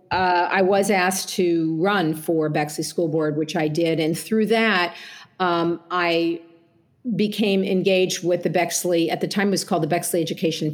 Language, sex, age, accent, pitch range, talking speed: English, female, 50-69, American, 160-190 Hz, 180 wpm